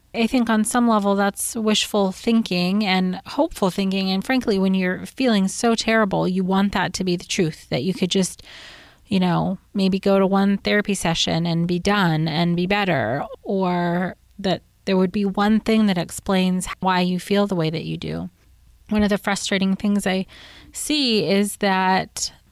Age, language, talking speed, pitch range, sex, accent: 30-49, English, 185 wpm, 180-215 Hz, female, American